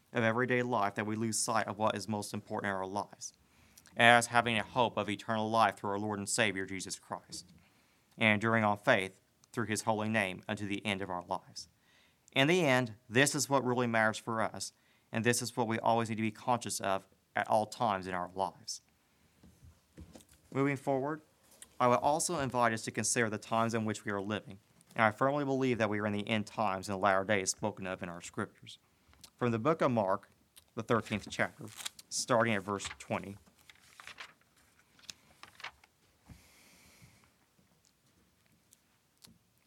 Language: English